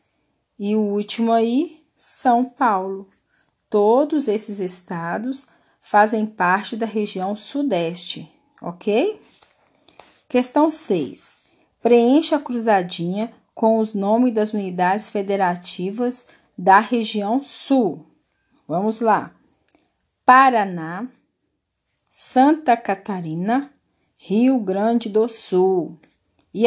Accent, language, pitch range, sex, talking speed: Brazilian, Portuguese, 195-255 Hz, female, 90 wpm